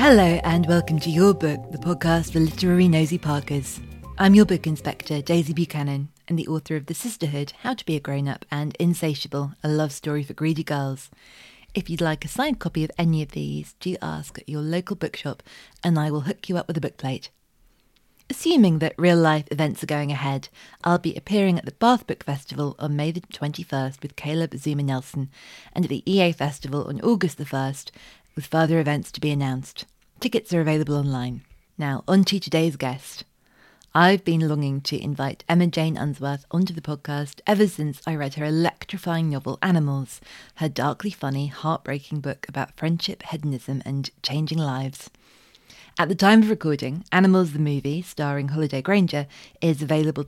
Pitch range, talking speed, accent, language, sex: 140-170 Hz, 180 wpm, British, English, female